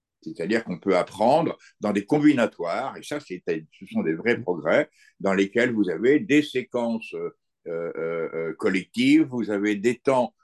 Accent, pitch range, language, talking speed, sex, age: French, 105-135 Hz, French, 160 wpm, male, 60-79